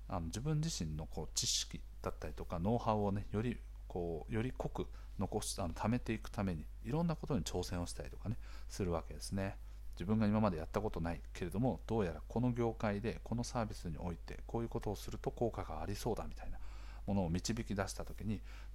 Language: Japanese